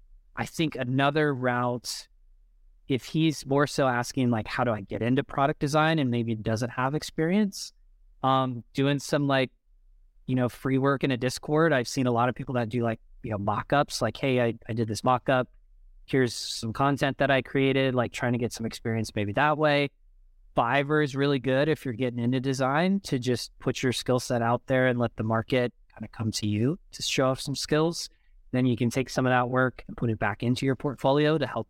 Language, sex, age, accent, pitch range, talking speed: English, male, 30-49, American, 115-140 Hz, 220 wpm